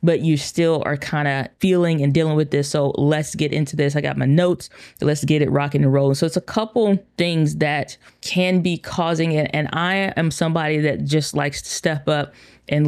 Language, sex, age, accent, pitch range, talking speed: English, female, 20-39, American, 140-165 Hz, 220 wpm